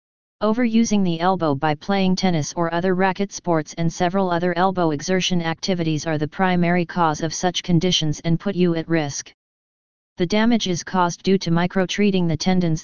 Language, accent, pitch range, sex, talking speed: English, American, 165-190 Hz, female, 175 wpm